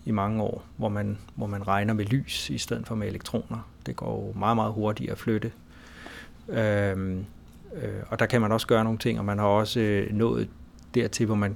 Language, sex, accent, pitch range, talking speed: Danish, male, native, 105-120 Hz, 220 wpm